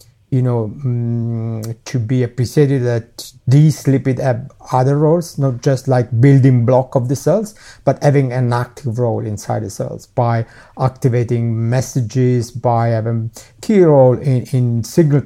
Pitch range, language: 120-145 Hz, English